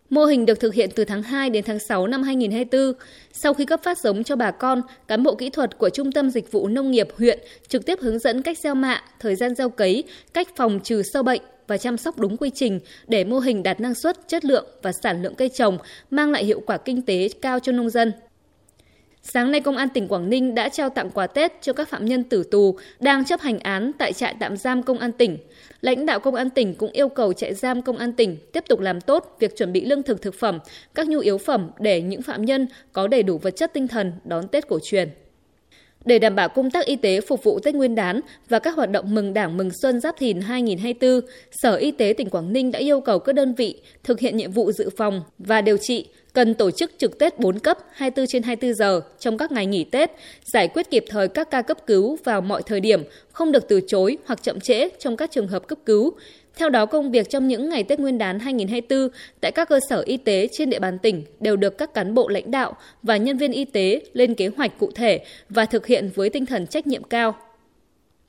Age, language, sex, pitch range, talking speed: 20-39, Vietnamese, female, 210-275 Hz, 250 wpm